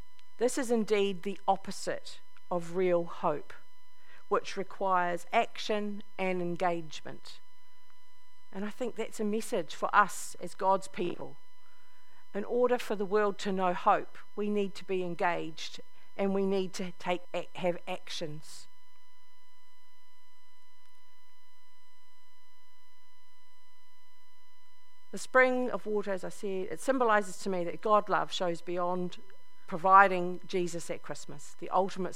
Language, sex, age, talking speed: English, female, 50-69, 125 wpm